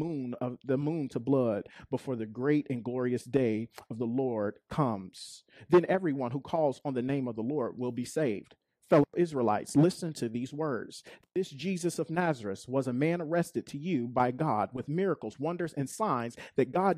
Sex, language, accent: male, English, American